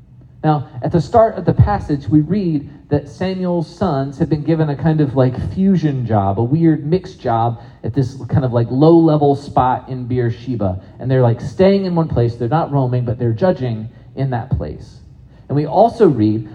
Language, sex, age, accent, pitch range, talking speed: English, male, 40-59, American, 120-155 Hz, 195 wpm